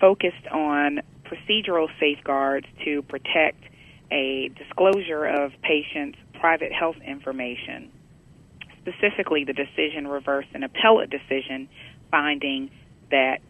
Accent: American